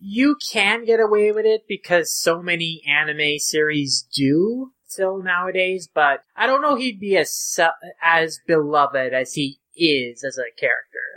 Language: English